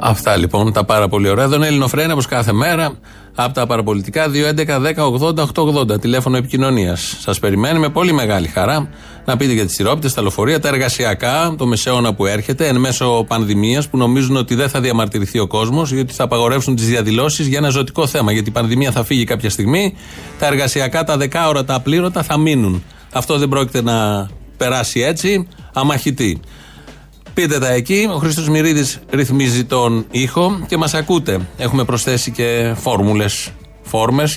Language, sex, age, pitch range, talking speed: Greek, male, 30-49, 110-150 Hz, 175 wpm